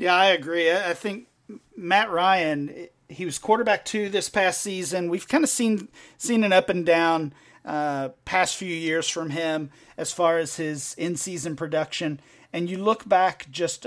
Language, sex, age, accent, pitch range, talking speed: English, male, 40-59, American, 150-185 Hz, 175 wpm